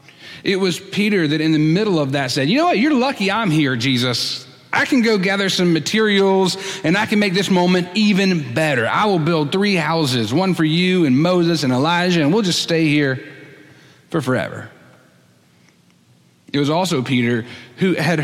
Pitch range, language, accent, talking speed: 135-180 Hz, English, American, 190 wpm